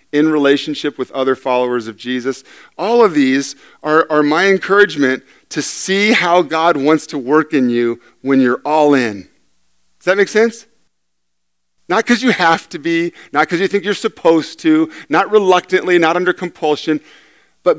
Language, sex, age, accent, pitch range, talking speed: English, male, 40-59, American, 100-150 Hz, 170 wpm